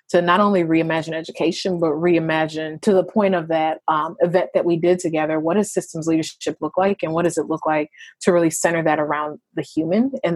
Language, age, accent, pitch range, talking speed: English, 30-49, American, 160-190 Hz, 220 wpm